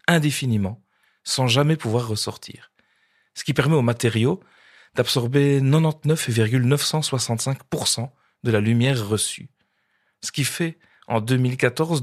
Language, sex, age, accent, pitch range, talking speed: French, male, 40-59, French, 110-140 Hz, 105 wpm